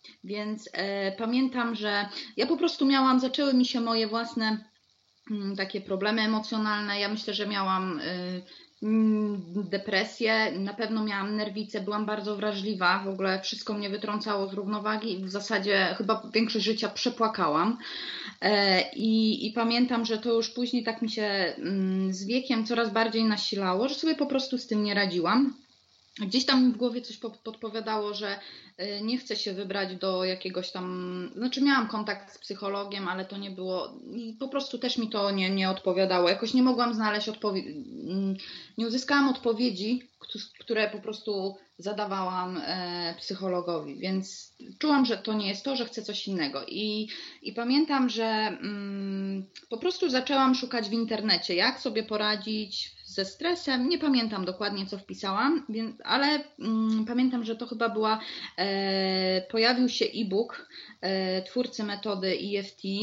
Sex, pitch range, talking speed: female, 195-240 Hz, 150 wpm